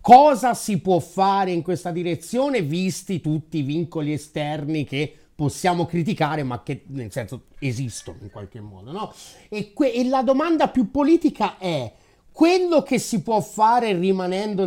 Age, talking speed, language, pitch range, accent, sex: 30-49, 155 wpm, Italian, 150-195 Hz, native, male